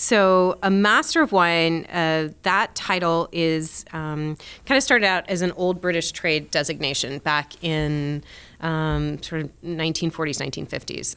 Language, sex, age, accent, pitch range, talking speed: English, female, 30-49, American, 155-180 Hz, 135 wpm